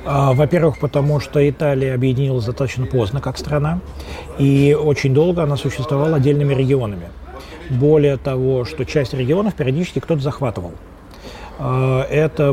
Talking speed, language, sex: 120 wpm, Russian, male